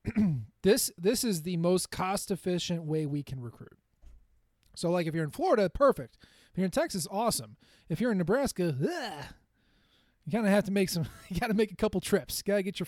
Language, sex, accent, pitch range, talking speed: English, male, American, 150-190 Hz, 205 wpm